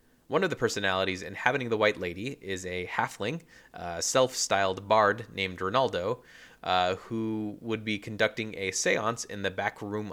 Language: English